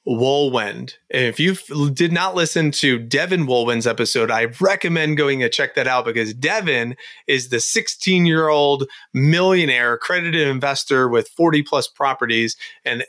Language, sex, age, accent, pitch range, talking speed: English, male, 30-49, American, 125-150 Hz, 145 wpm